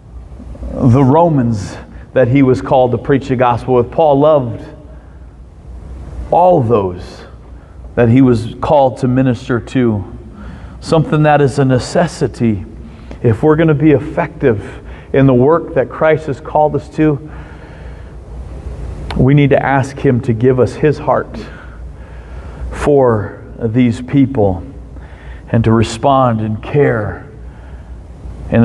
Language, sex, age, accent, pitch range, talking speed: English, male, 40-59, American, 105-145 Hz, 130 wpm